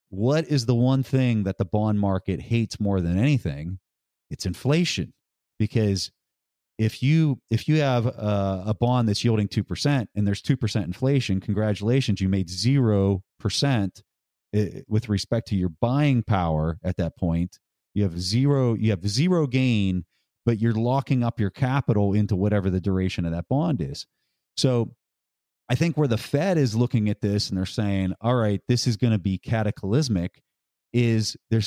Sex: male